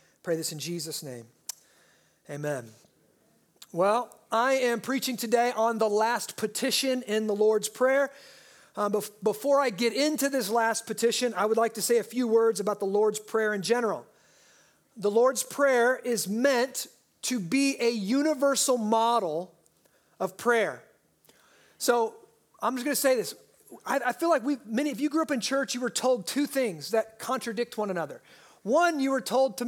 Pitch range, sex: 215-265 Hz, male